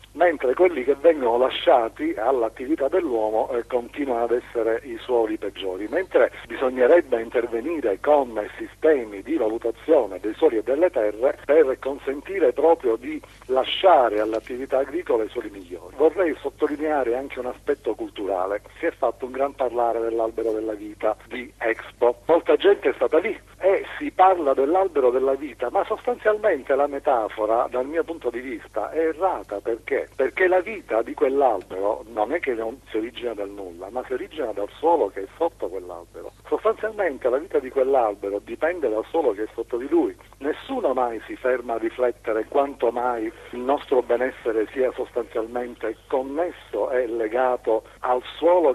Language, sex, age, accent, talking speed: Italian, male, 50-69, native, 155 wpm